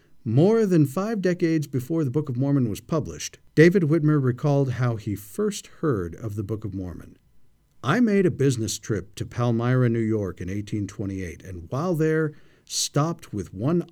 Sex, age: male, 50-69